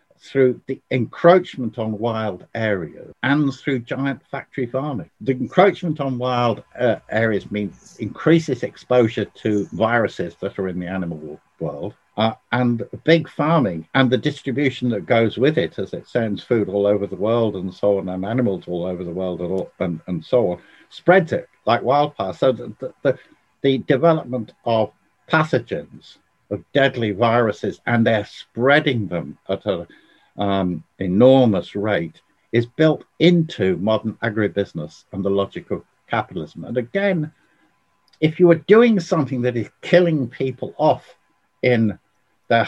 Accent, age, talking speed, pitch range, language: British, 60-79, 150 wpm, 105-140 Hz, English